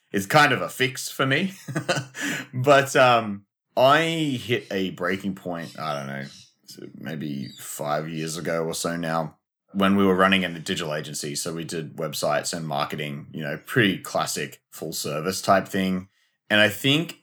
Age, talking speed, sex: 30-49, 165 wpm, male